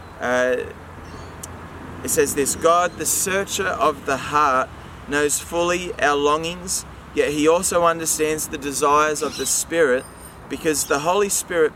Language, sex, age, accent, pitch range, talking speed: English, male, 20-39, Australian, 125-160 Hz, 140 wpm